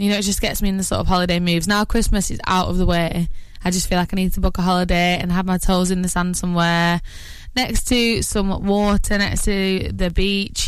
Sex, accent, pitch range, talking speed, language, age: female, British, 175-210 Hz, 255 wpm, English, 20-39